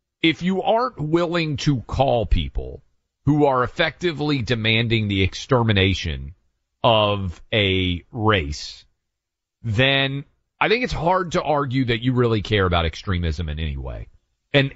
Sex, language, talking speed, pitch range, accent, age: male, English, 135 wpm, 100-140 Hz, American, 40-59